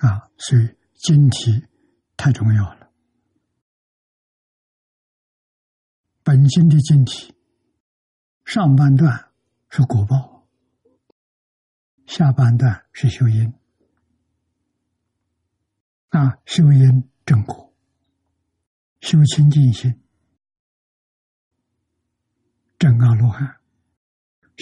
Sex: male